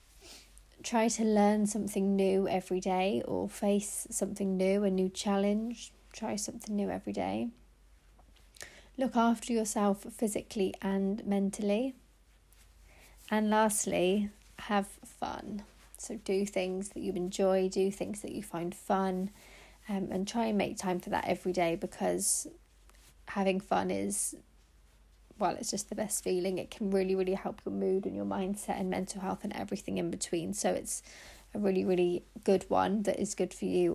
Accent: British